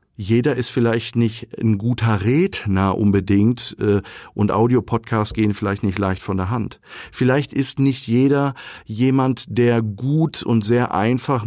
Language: German